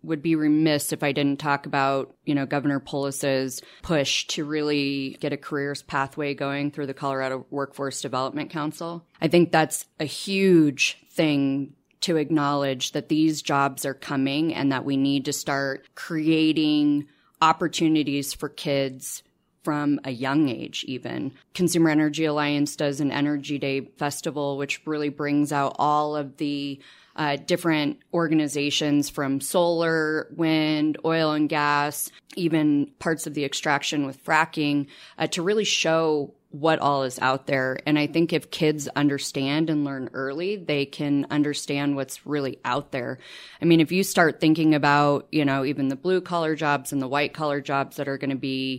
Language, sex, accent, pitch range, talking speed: English, female, American, 140-155 Hz, 165 wpm